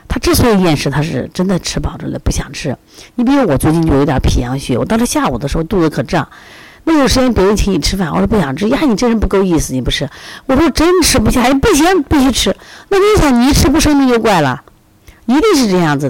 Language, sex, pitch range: Chinese, female, 140-225 Hz